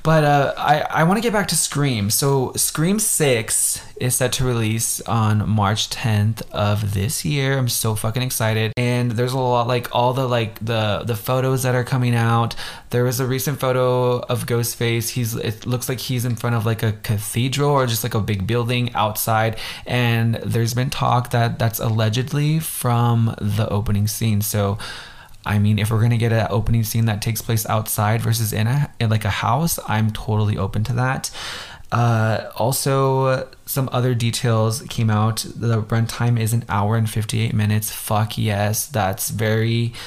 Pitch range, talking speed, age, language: 110-125 Hz, 185 wpm, 20-39, English